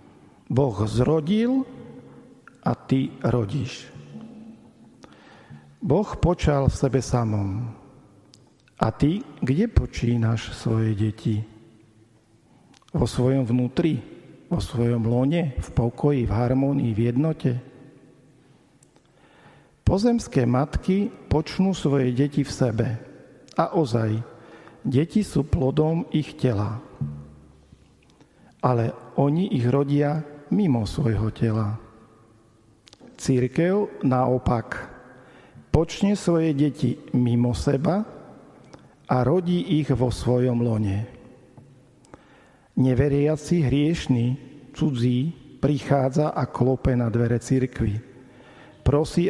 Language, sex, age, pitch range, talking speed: Slovak, male, 50-69, 120-145 Hz, 90 wpm